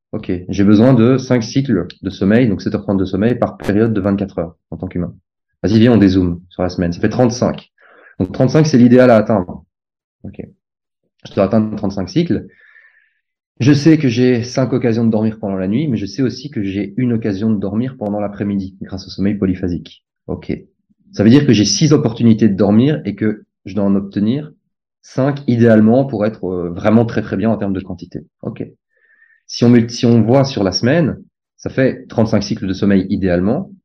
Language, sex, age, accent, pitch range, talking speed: French, male, 30-49, French, 100-130 Hz, 200 wpm